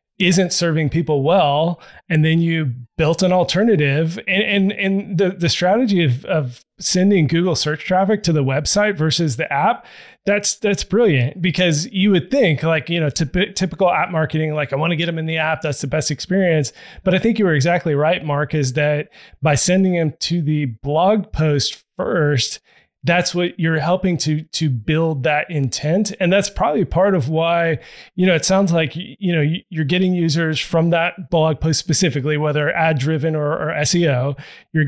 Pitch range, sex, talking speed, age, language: 150-180 Hz, male, 185 wpm, 20-39, English